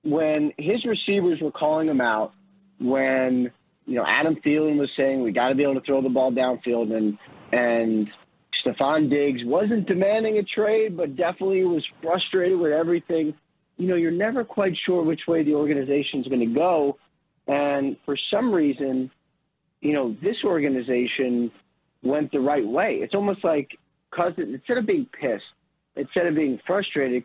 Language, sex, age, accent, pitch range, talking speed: English, male, 30-49, American, 135-175 Hz, 165 wpm